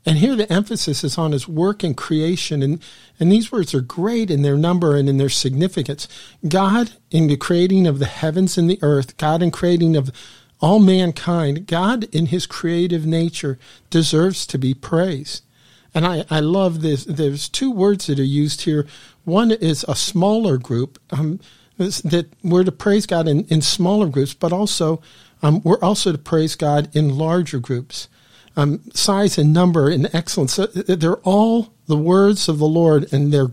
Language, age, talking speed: English, 50-69, 180 wpm